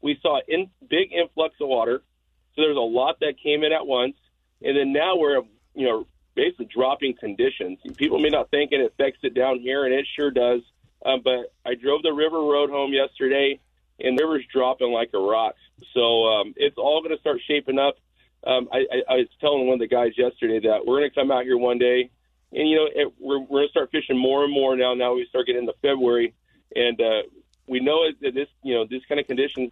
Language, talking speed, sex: English, 230 wpm, male